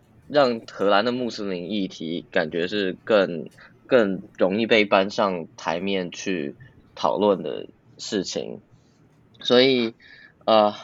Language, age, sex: Chinese, 20-39, male